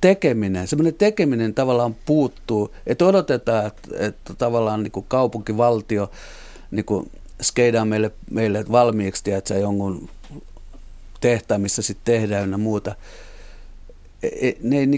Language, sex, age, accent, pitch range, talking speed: Finnish, male, 50-69, native, 95-120 Hz, 100 wpm